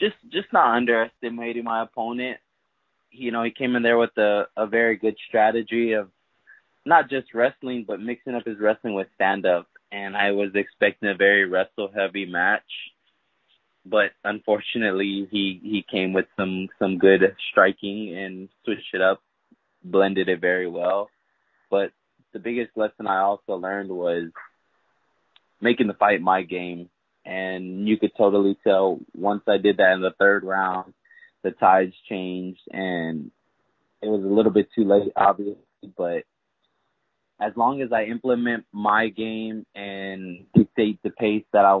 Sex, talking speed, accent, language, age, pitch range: male, 155 wpm, American, English, 20-39, 95-110 Hz